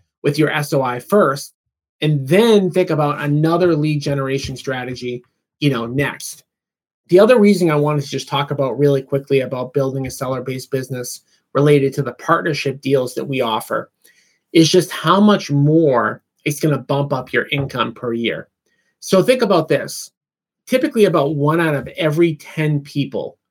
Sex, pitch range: male, 135-170 Hz